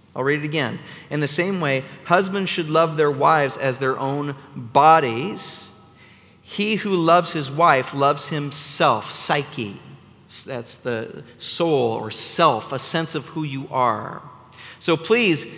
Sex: male